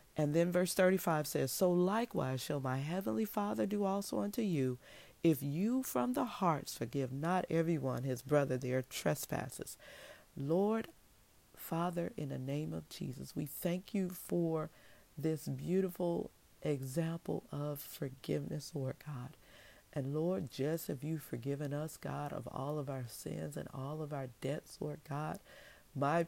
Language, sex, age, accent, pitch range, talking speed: English, female, 40-59, American, 140-175 Hz, 155 wpm